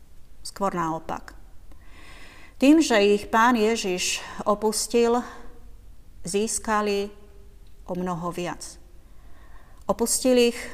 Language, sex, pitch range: Slovak, female, 175-235 Hz